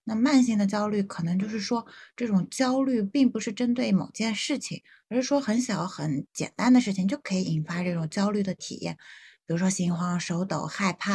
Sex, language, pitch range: female, Chinese, 180-235 Hz